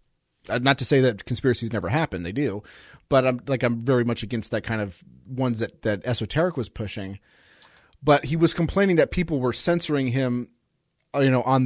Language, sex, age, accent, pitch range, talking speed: English, male, 30-49, American, 110-140 Hz, 190 wpm